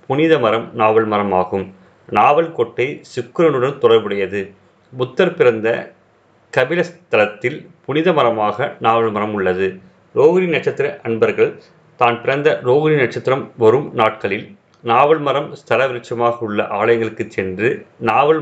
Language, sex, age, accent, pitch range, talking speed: Tamil, male, 30-49, native, 110-170 Hz, 110 wpm